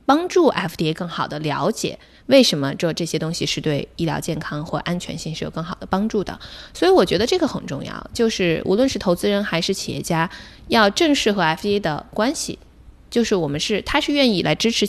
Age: 20-39